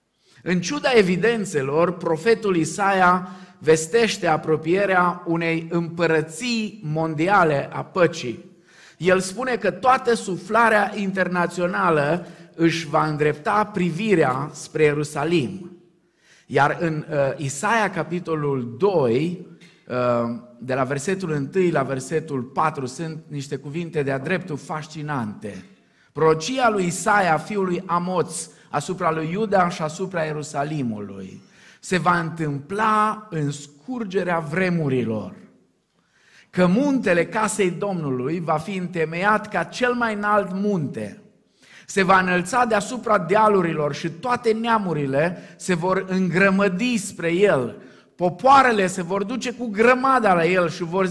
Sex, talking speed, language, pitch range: male, 110 wpm, Romanian, 155-205 Hz